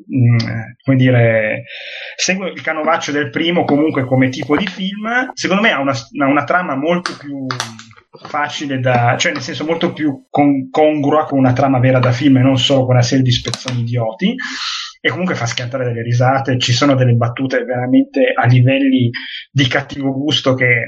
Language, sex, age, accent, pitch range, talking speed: Italian, male, 30-49, native, 125-165 Hz, 175 wpm